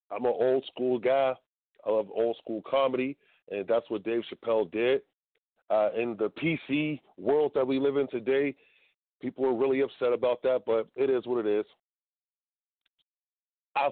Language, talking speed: English, 160 wpm